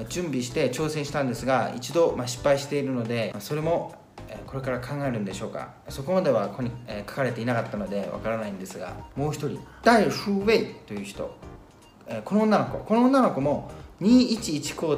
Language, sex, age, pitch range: Japanese, male, 40-59, 125-200 Hz